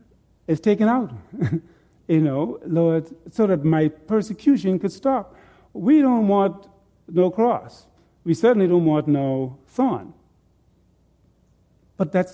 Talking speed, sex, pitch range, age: 120 wpm, male, 150-215 Hz, 50-69